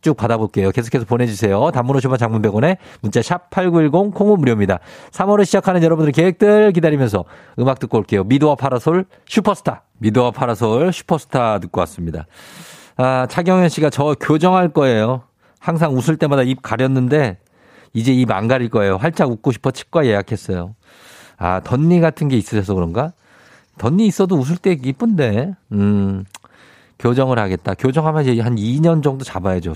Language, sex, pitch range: Korean, male, 105-150 Hz